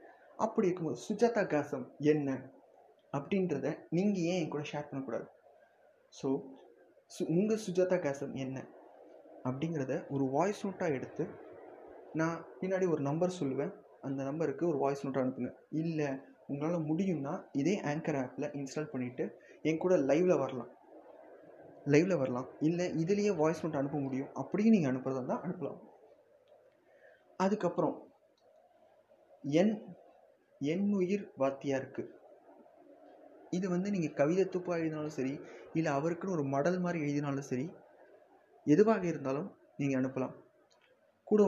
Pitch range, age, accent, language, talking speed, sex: 135-175 Hz, 20-39, Indian, English, 85 wpm, male